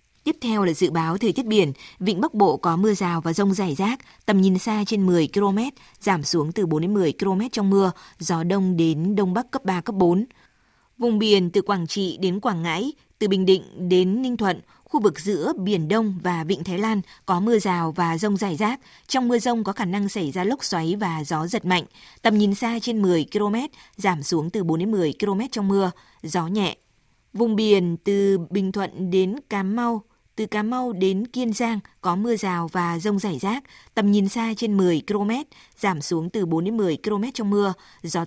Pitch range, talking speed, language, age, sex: 180-215 Hz, 215 wpm, Vietnamese, 20-39, female